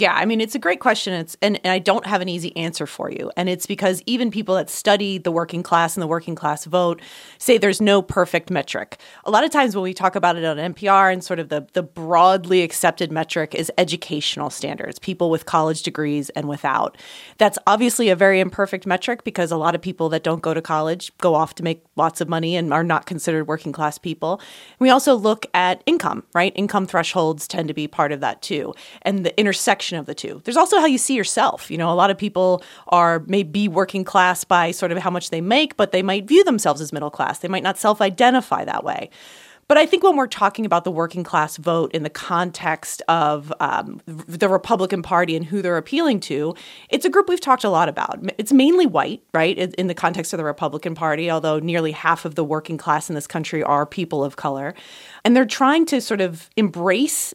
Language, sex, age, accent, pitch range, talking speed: English, female, 30-49, American, 165-205 Hz, 230 wpm